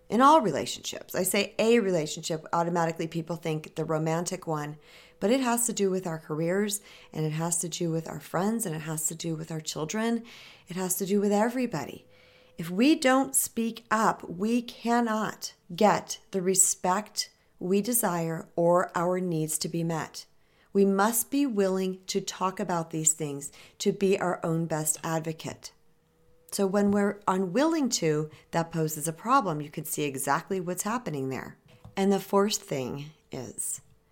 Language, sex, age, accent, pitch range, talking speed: English, female, 40-59, American, 160-205 Hz, 170 wpm